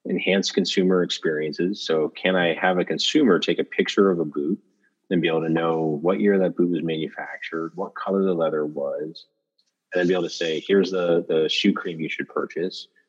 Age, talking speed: 30-49, 205 wpm